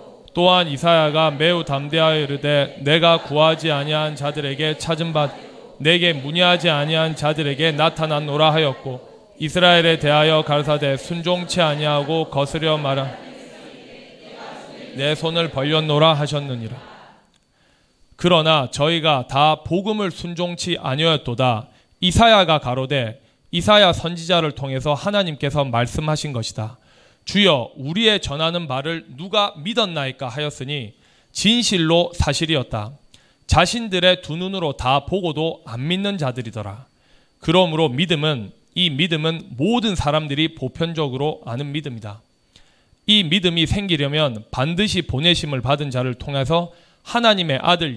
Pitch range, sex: 140-175 Hz, male